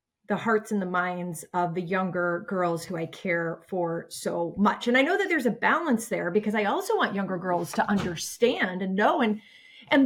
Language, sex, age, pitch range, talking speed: English, female, 30-49, 185-245 Hz, 210 wpm